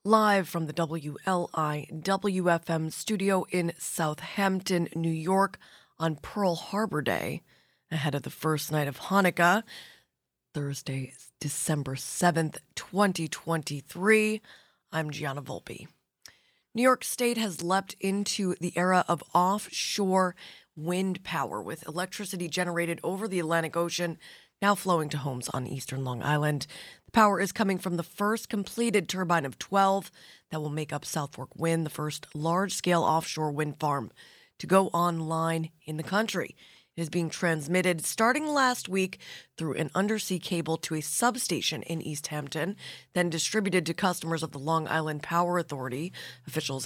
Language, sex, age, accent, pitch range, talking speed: English, female, 20-39, American, 155-195 Hz, 145 wpm